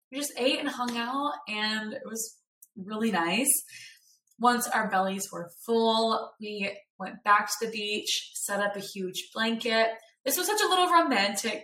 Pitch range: 195-255 Hz